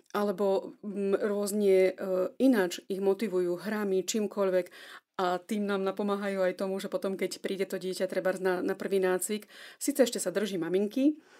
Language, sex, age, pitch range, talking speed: Slovak, female, 30-49, 190-220 Hz, 155 wpm